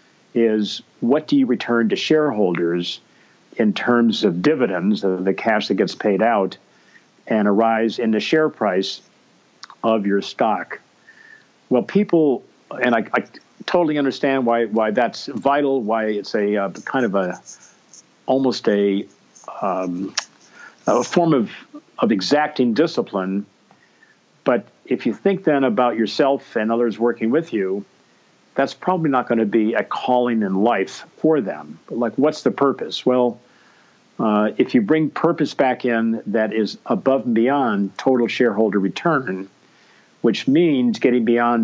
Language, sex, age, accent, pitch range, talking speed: English, male, 50-69, American, 105-135 Hz, 145 wpm